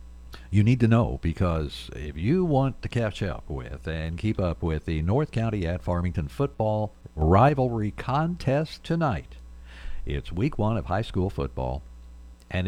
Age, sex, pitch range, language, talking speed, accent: 60-79, male, 65-100 Hz, English, 155 wpm, American